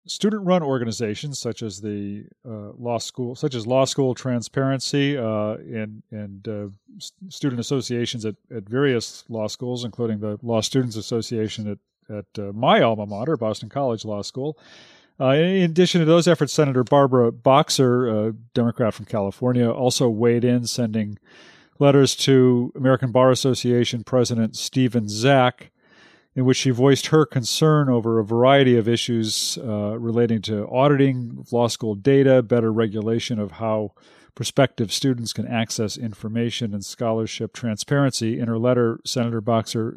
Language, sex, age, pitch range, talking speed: English, male, 40-59, 110-130 Hz, 155 wpm